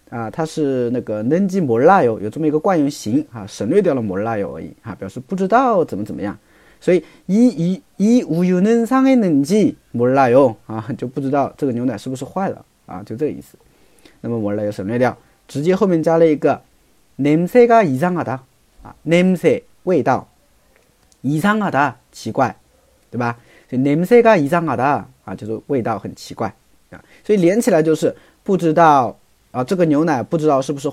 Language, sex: Chinese, male